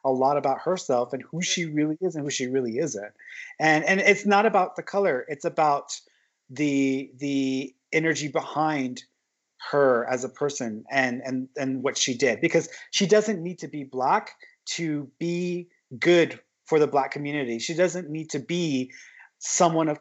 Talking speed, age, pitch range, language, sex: 175 wpm, 30-49, 135-185 Hz, English, male